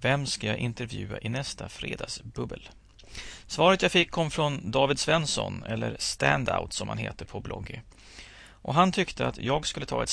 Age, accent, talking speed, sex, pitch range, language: 30-49, Swedish, 170 wpm, male, 95-145 Hz, English